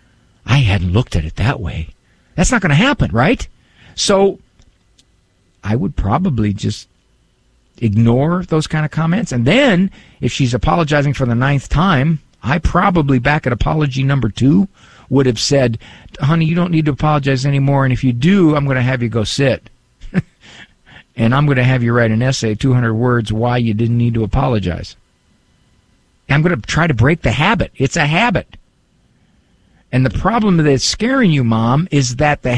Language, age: English, 50-69